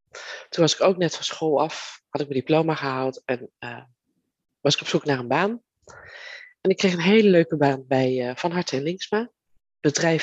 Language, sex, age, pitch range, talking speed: Dutch, female, 20-39, 135-170 Hz, 210 wpm